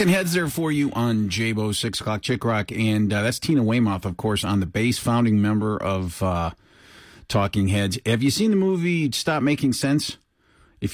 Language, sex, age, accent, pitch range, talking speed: English, male, 40-59, American, 95-120 Hz, 195 wpm